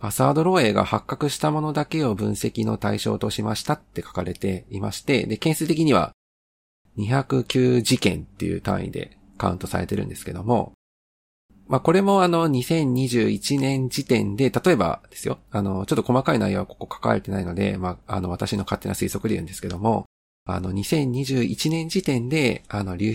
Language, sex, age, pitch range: Japanese, male, 40-59, 95-130 Hz